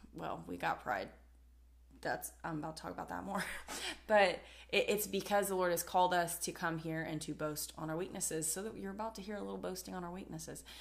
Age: 20-39